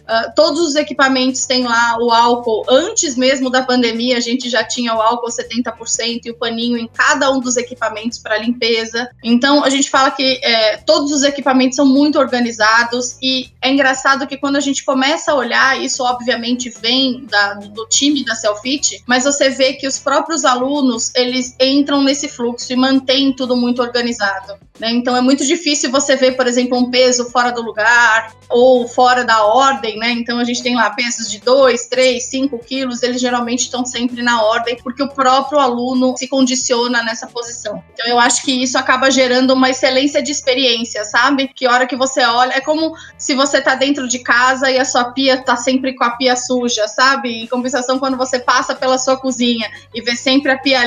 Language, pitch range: Portuguese, 240-270 Hz